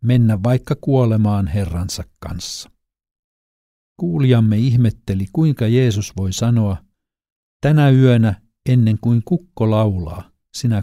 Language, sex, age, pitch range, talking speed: Finnish, male, 50-69, 105-130 Hz, 100 wpm